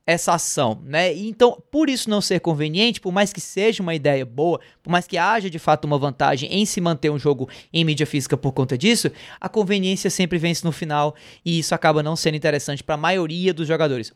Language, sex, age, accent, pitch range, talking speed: Portuguese, male, 20-39, Brazilian, 140-175 Hz, 220 wpm